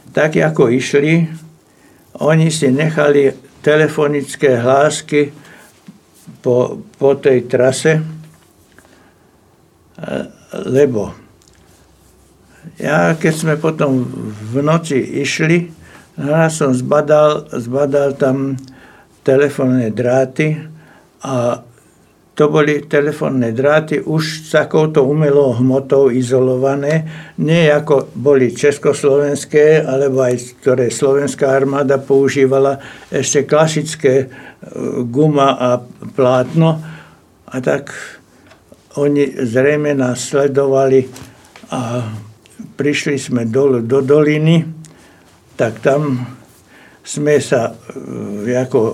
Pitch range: 130-150 Hz